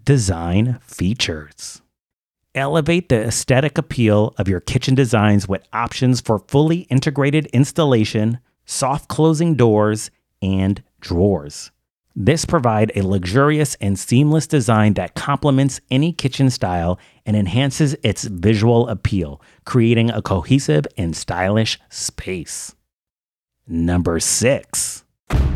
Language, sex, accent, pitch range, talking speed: English, male, American, 95-130 Hz, 110 wpm